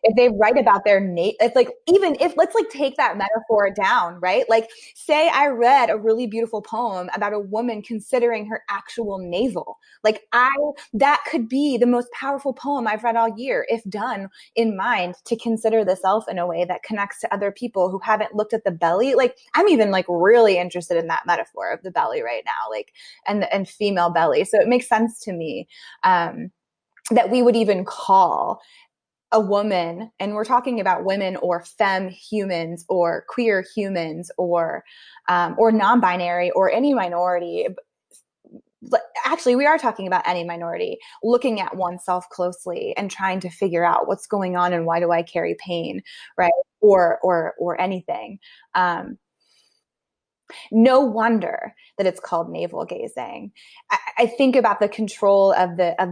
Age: 20-39